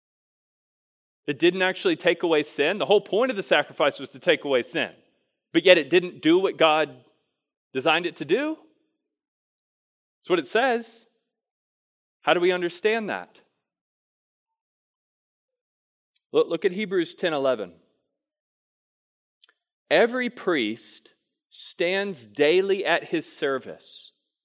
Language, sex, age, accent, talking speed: English, male, 30-49, American, 120 wpm